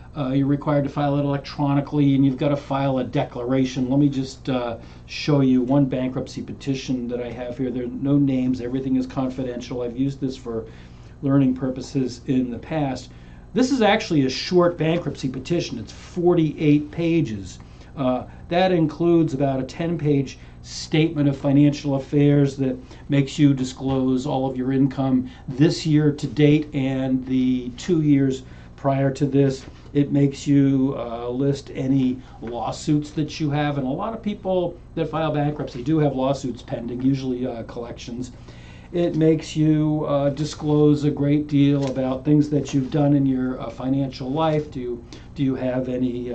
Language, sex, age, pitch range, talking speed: English, male, 40-59, 130-150 Hz, 170 wpm